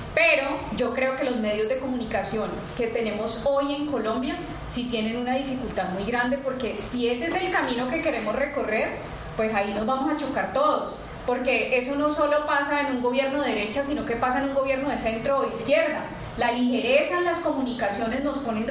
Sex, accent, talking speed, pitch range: female, Colombian, 200 wpm, 230-275 Hz